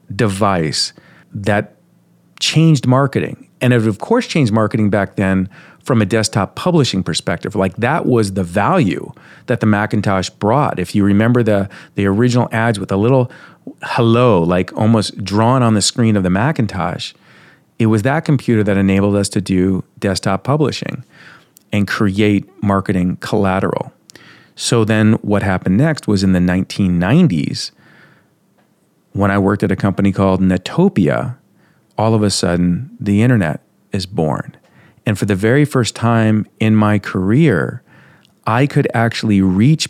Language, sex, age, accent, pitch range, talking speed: English, male, 40-59, American, 95-120 Hz, 150 wpm